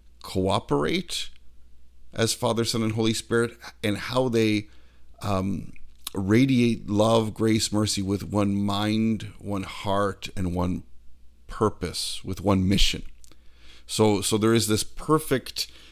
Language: English